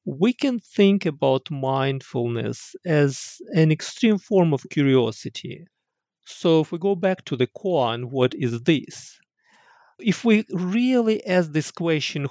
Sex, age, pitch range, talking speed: male, 40-59, 125-180 Hz, 135 wpm